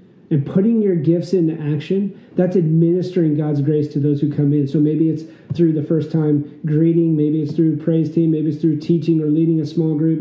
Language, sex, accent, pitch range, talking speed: English, male, American, 145-170 Hz, 210 wpm